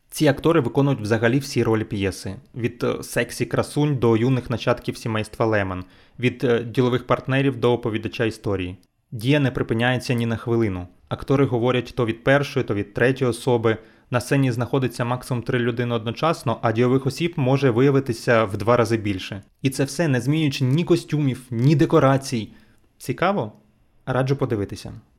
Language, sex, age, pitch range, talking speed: Ukrainian, male, 20-39, 115-140 Hz, 150 wpm